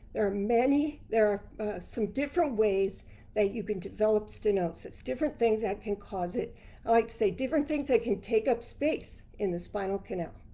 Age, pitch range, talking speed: 50-69, 200-235 Hz, 200 wpm